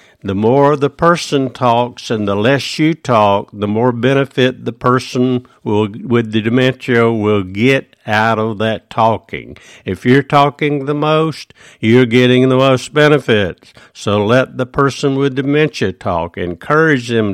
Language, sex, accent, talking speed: English, male, American, 150 wpm